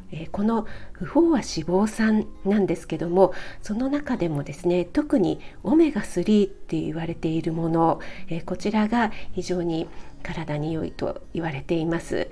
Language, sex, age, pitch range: Japanese, female, 50-69, 165-215 Hz